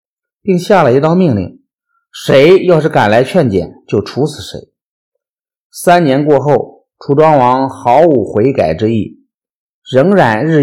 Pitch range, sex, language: 115-190 Hz, male, Chinese